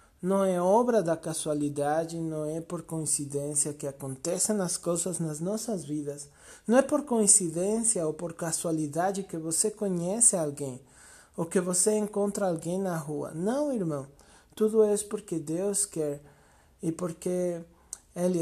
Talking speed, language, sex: 145 wpm, Portuguese, male